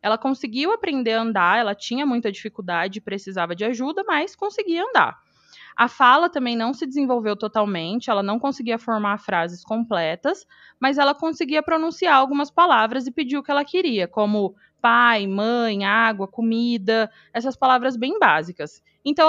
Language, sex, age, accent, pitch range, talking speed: Portuguese, female, 20-39, Brazilian, 210-280 Hz, 160 wpm